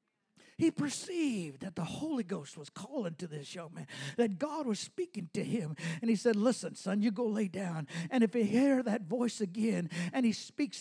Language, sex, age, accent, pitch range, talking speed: English, male, 50-69, American, 210-305 Hz, 205 wpm